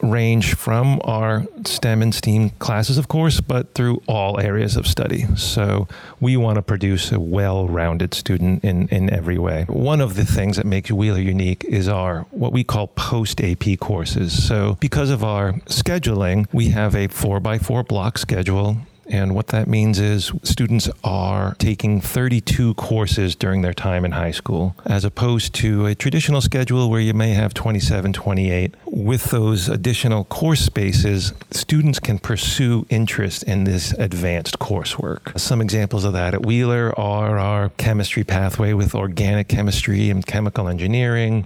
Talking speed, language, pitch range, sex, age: 160 wpm, English, 100-115 Hz, male, 40-59